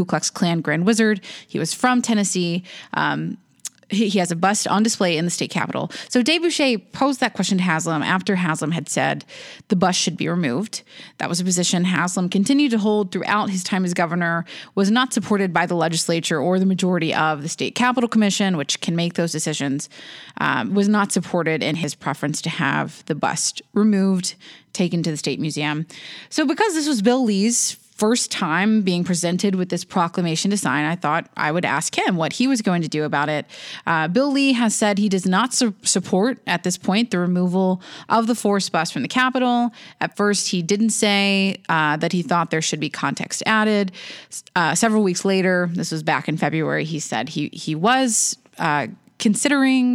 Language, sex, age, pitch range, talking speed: English, female, 20-39, 170-220 Hz, 200 wpm